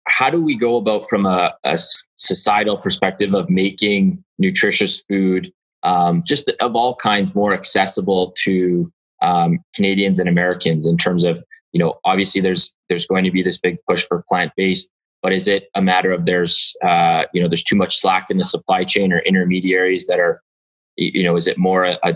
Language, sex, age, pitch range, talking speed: English, male, 20-39, 85-95 Hz, 190 wpm